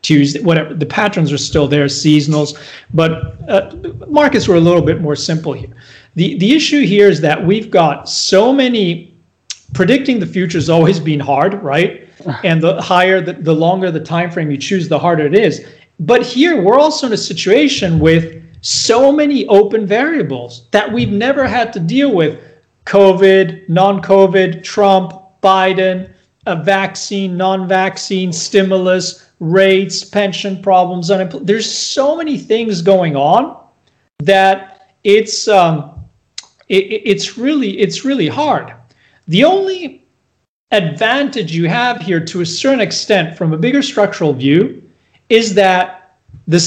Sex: male